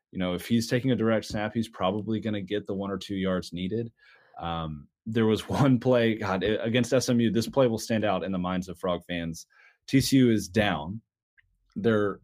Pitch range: 90-115 Hz